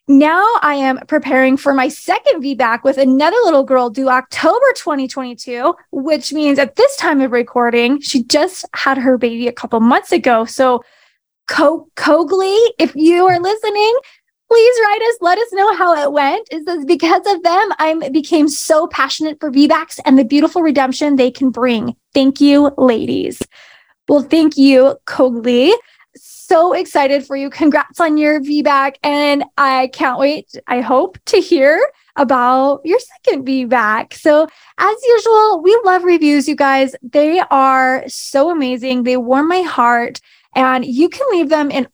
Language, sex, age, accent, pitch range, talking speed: English, female, 20-39, American, 260-330 Hz, 160 wpm